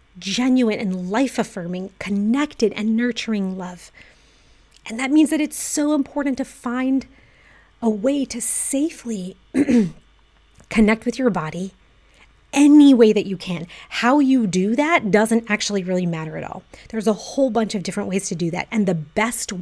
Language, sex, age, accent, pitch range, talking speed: English, female, 30-49, American, 200-255 Hz, 160 wpm